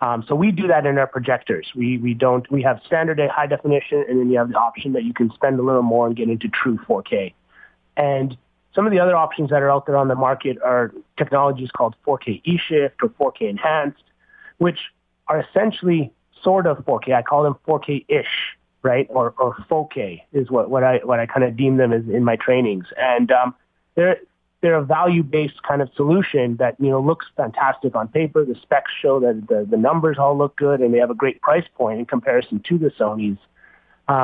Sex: male